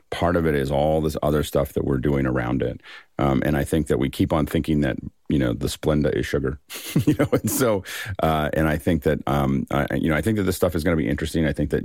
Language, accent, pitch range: English, American, 65-80 Hz